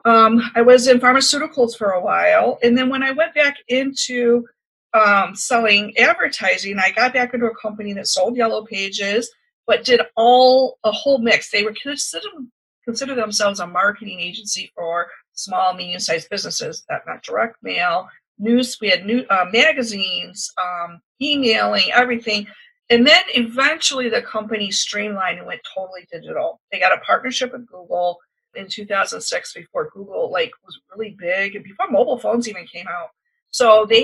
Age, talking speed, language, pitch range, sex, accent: 50-69, 165 wpm, English, 200-255 Hz, female, American